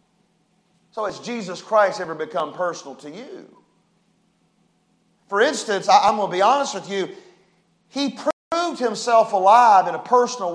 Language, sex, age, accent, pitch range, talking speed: English, male, 40-59, American, 185-250 Hz, 140 wpm